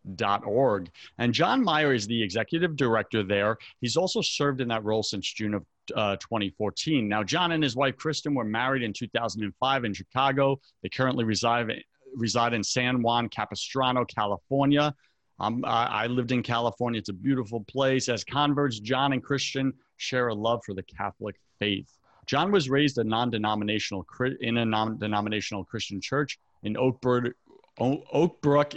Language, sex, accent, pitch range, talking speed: English, male, American, 100-125 Hz, 165 wpm